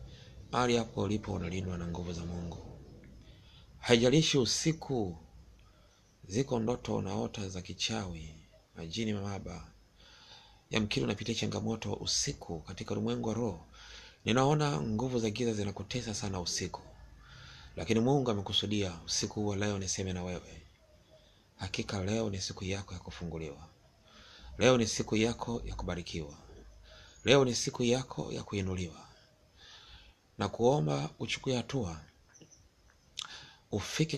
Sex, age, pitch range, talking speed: male, 30-49, 90-115 Hz, 115 wpm